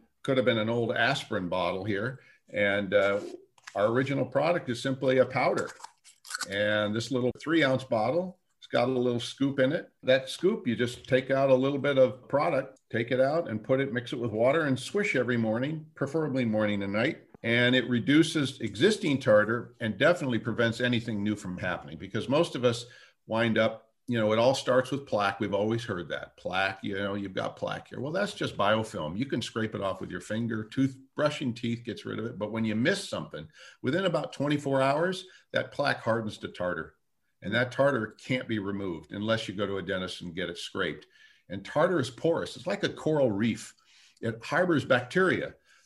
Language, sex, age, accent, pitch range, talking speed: English, male, 50-69, American, 110-135 Hz, 205 wpm